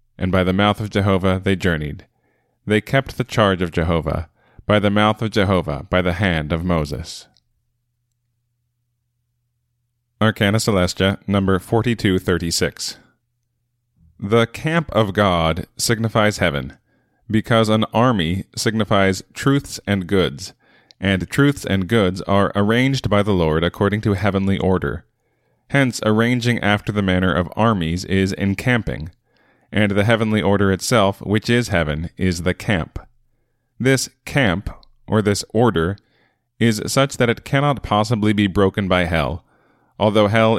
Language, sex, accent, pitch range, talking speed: English, male, American, 95-120 Hz, 135 wpm